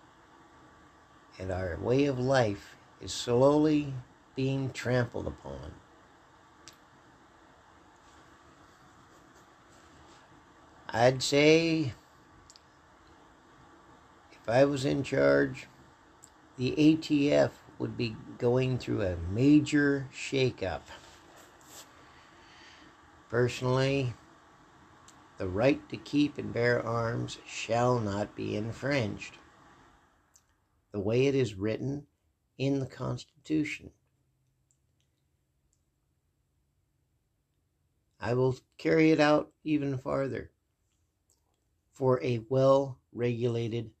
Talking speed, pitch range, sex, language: 75 wpm, 95-130 Hz, male, English